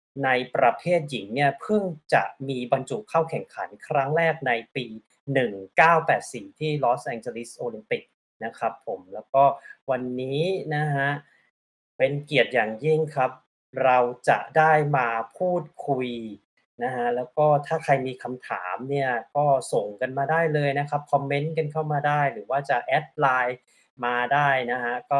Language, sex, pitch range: Thai, male, 125-150 Hz